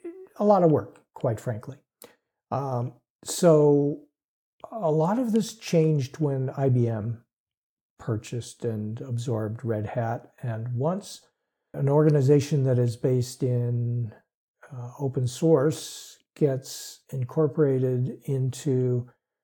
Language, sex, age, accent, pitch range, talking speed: English, male, 60-79, American, 120-155 Hz, 105 wpm